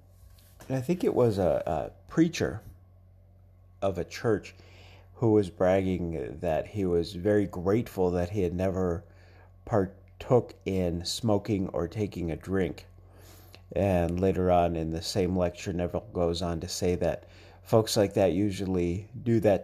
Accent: American